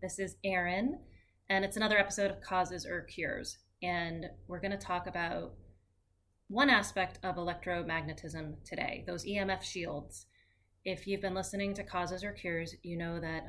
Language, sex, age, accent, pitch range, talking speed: English, female, 20-39, American, 165-195 Hz, 155 wpm